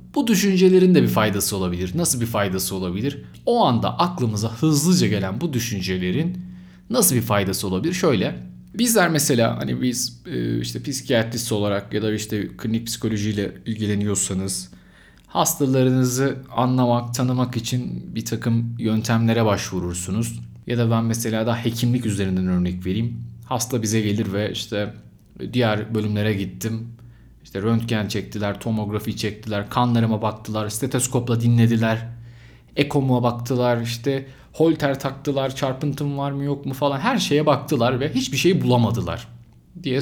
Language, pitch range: Turkish, 105-135 Hz